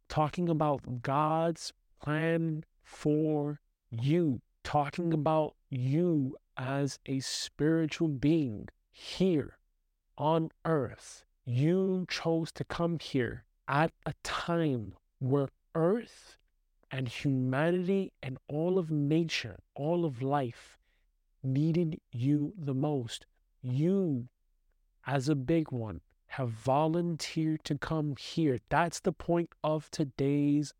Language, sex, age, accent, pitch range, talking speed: English, male, 50-69, American, 135-165 Hz, 105 wpm